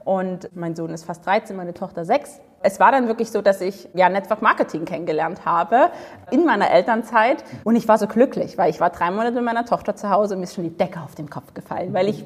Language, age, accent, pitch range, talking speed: German, 30-49, German, 180-230 Hz, 245 wpm